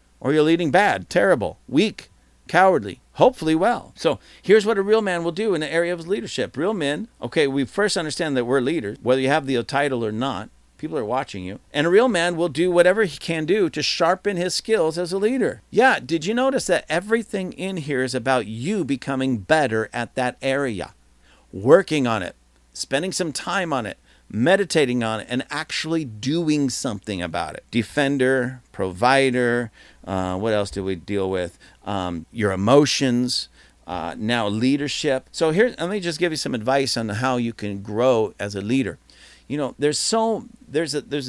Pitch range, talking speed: 115-160 Hz, 190 wpm